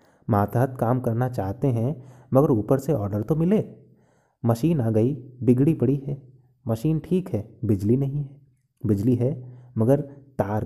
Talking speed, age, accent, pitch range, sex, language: 150 wpm, 30-49, native, 115-140 Hz, male, Hindi